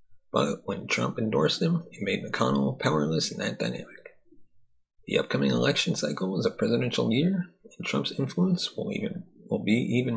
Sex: male